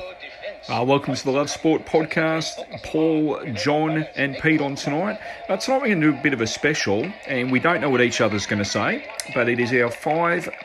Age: 40-59